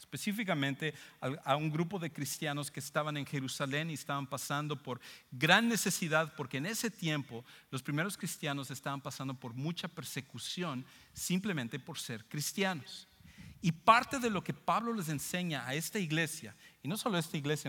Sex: male